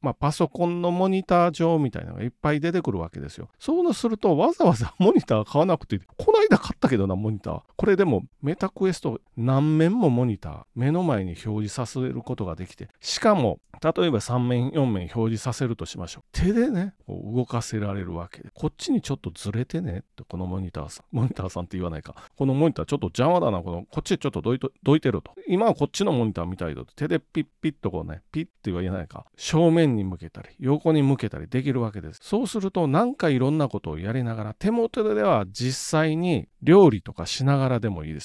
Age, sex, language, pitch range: 40-59, male, Japanese, 105-165 Hz